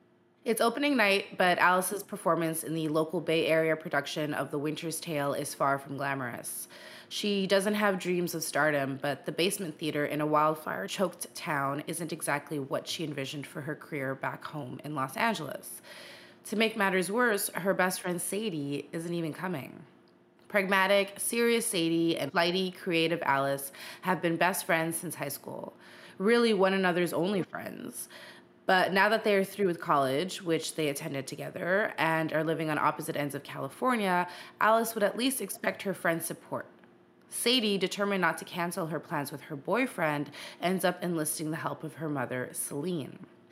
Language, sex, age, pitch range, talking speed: English, female, 20-39, 150-195 Hz, 170 wpm